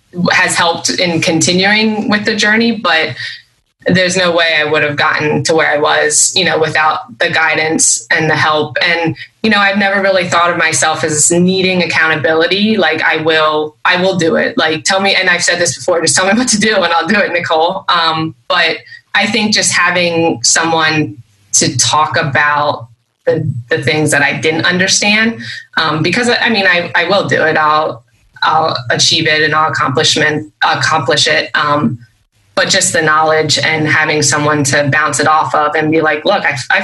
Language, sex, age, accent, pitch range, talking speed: English, female, 20-39, American, 155-175 Hz, 195 wpm